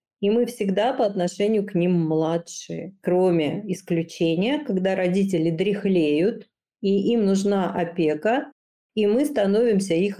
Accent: native